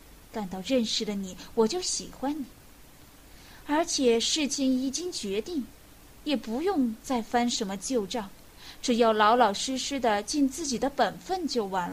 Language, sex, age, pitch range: Chinese, female, 20-39, 210-265 Hz